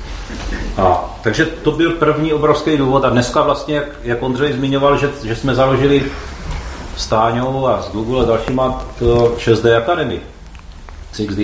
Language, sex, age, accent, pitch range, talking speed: Czech, male, 40-59, native, 80-130 Hz, 145 wpm